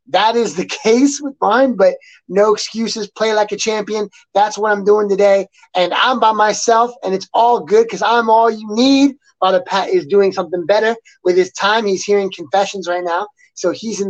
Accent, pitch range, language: American, 185-230 Hz, English